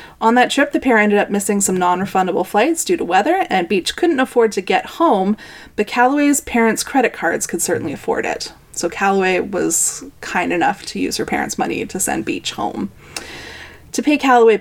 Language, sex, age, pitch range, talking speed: English, female, 20-39, 195-250 Hz, 195 wpm